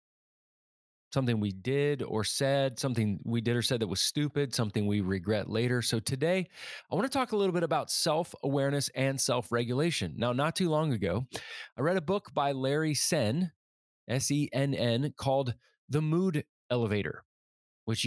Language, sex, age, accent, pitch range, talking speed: English, male, 30-49, American, 115-150 Hz, 175 wpm